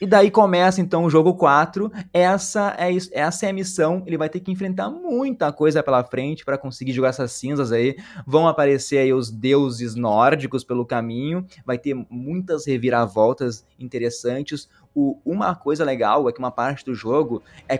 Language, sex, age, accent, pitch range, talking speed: Portuguese, male, 20-39, Brazilian, 130-175 Hz, 170 wpm